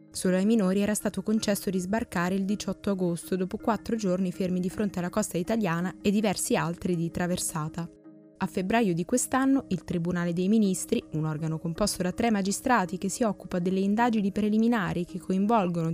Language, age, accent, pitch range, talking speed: Italian, 20-39, native, 175-210 Hz, 175 wpm